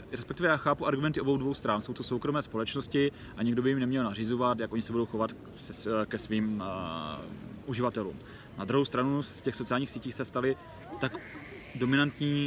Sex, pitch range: male, 115-135 Hz